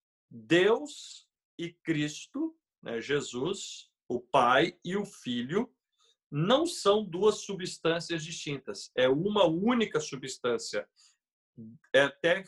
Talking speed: 95 wpm